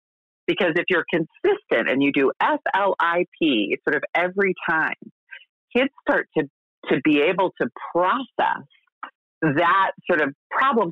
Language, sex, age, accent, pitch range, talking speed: English, female, 40-59, American, 130-185 Hz, 150 wpm